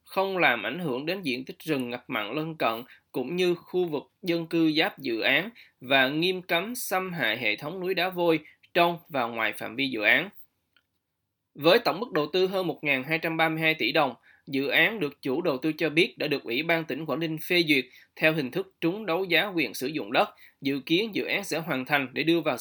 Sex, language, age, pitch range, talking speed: male, Vietnamese, 20-39, 145-175 Hz, 225 wpm